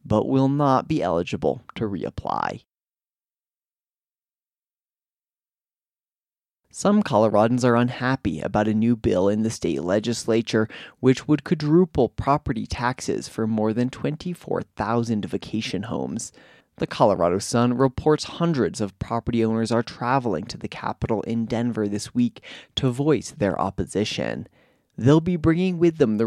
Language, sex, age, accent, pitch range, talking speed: English, male, 20-39, American, 105-140 Hz, 130 wpm